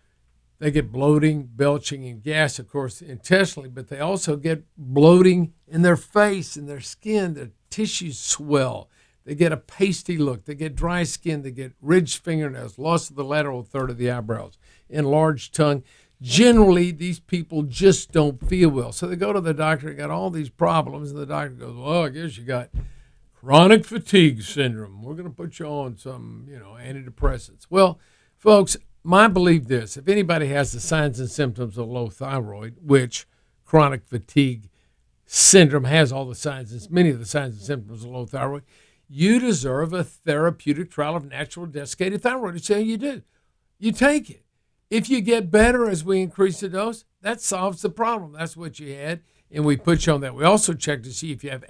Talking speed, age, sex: 195 wpm, 50-69, male